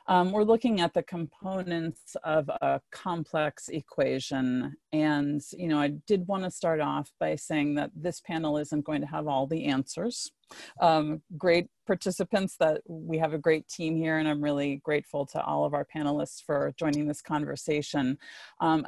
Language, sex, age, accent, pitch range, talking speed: English, female, 40-59, American, 140-170 Hz, 175 wpm